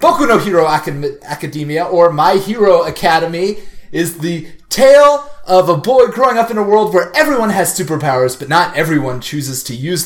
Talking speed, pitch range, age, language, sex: 180 wpm, 160-220 Hz, 30-49, English, male